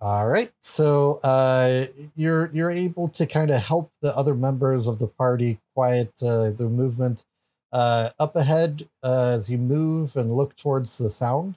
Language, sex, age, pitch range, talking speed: English, male, 30-49, 115-155 Hz, 170 wpm